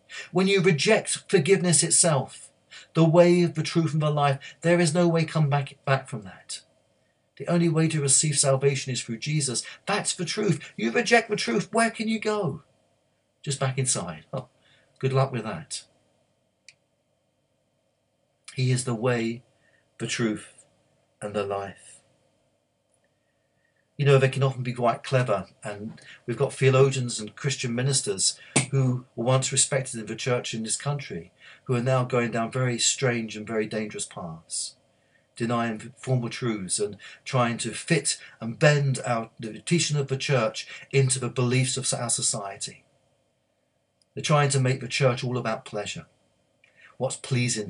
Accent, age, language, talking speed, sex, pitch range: British, 50-69, English, 160 wpm, male, 120-155 Hz